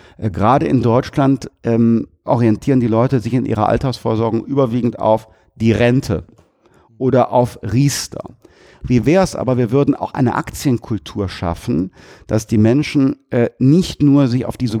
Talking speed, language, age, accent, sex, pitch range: 150 wpm, German, 50-69, German, male, 105-135 Hz